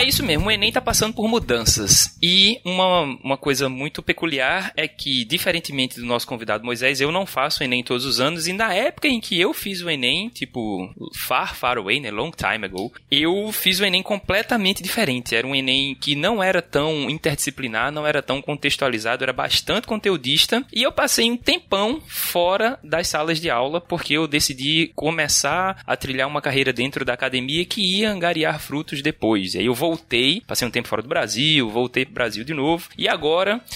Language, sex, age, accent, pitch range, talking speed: Portuguese, male, 20-39, Brazilian, 130-180 Hz, 200 wpm